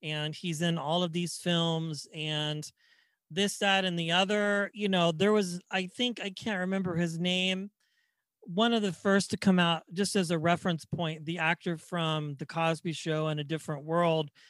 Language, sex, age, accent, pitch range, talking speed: English, male, 40-59, American, 170-215 Hz, 190 wpm